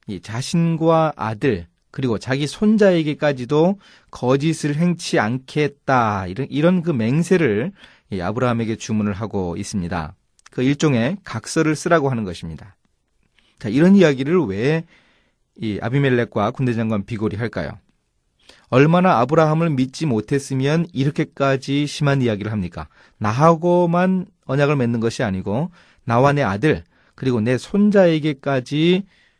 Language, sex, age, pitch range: Korean, male, 30-49, 110-155 Hz